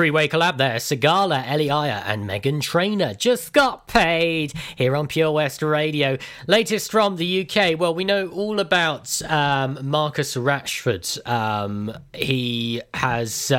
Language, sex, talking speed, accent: English, male, 140 wpm, British